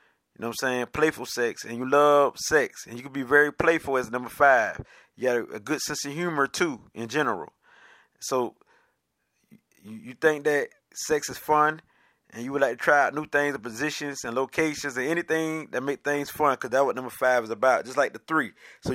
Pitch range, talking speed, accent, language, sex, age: 130-155 Hz, 215 wpm, American, English, male, 20-39